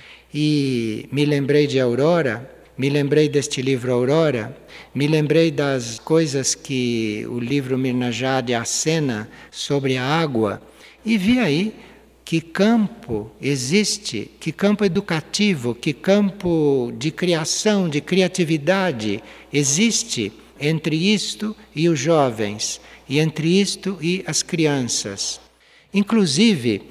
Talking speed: 115 wpm